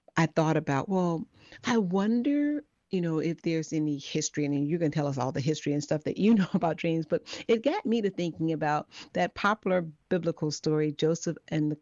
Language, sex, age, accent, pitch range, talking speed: English, female, 40-59, American, 145-165 Hz, 210 wpm